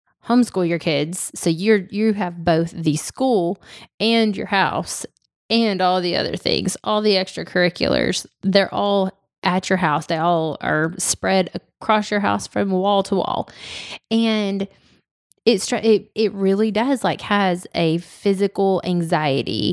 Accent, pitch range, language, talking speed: American, 175-210 Hz, English, 145 wpm